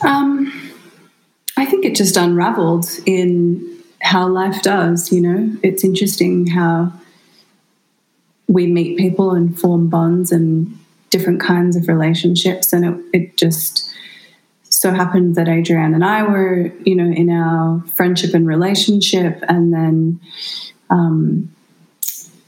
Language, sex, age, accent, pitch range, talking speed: English, female, 20-39, Australian, 170-190 Hz, 125 wpm